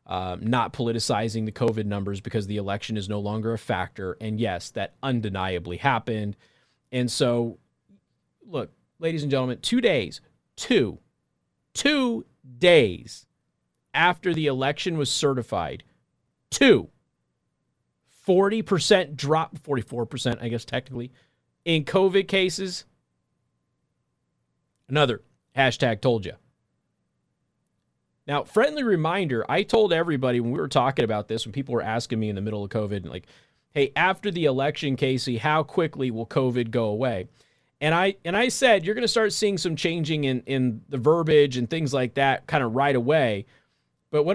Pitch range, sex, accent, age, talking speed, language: 115-190 Hz, male, American, 30-49, 145 wpm, English